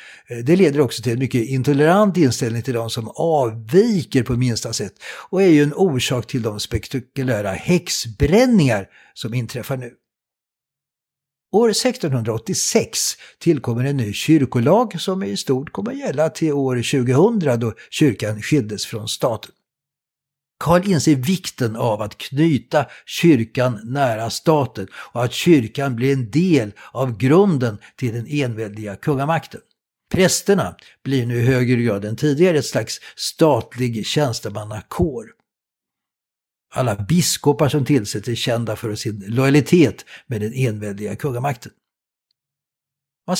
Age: 60-79